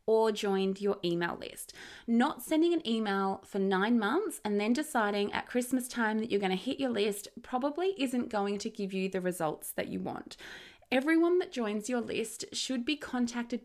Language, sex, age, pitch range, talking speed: English, female, 20-39, 200-250 Hz, 195 wpm